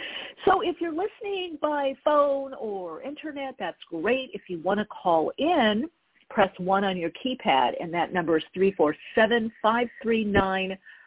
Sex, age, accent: female, 50-69, American